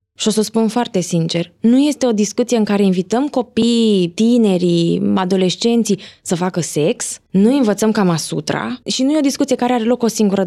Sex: female